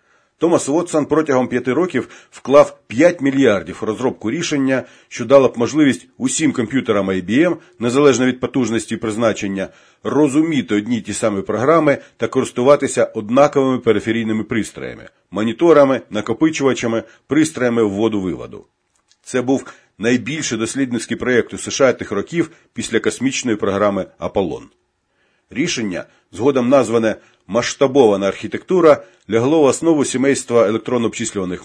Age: 40-59